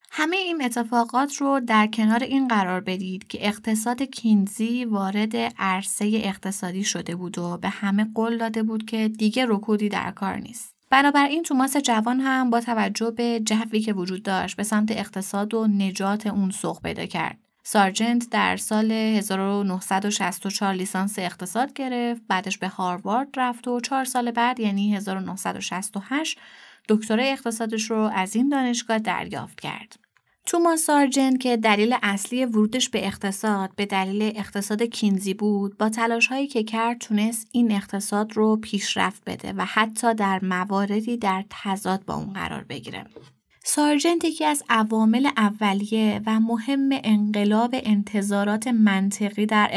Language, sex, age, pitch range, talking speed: Persian, female, 20-39, 200-235 Hz, 145 wpm